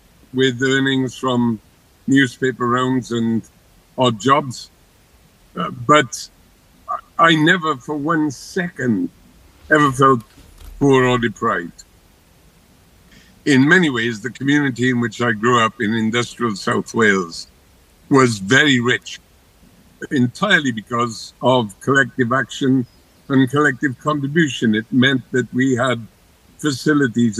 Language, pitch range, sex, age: English, 115-135 Hz, male, 60-79